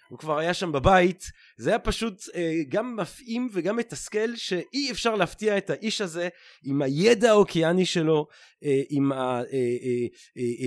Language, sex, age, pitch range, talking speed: Hebrew, male, 30-49, 150-205 Hz, 145 wpm